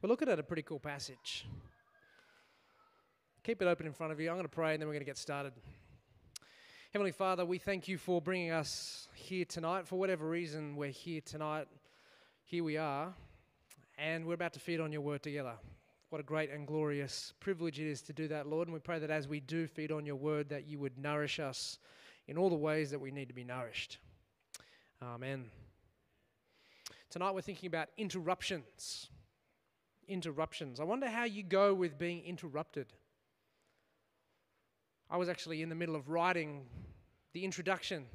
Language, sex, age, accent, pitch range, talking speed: English, male, 20-39, Australian, 150-185 Hz, 180 wpm